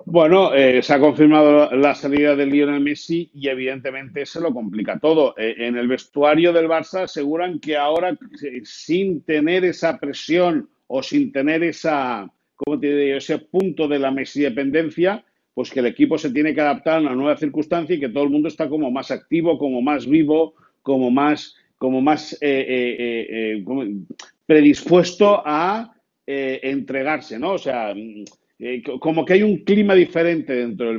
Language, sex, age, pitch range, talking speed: Spanish, male, 50-69, 135-170 Hz, 170 wpm